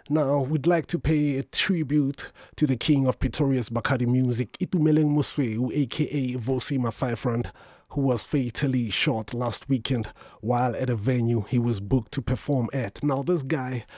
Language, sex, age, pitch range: English, male, 30-49, 120-140 Hz